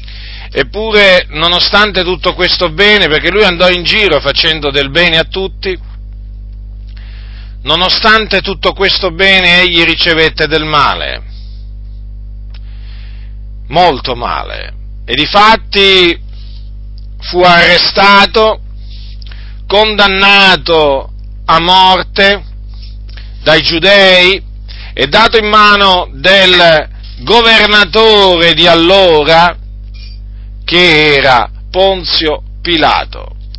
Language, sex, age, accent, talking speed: Italian, male, 40-59, native, 80 wpm